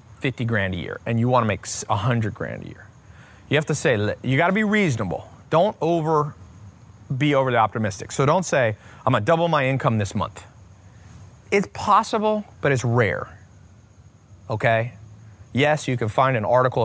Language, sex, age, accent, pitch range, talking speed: English, male, 30-49, American, 110-150 Hz, 175 wpm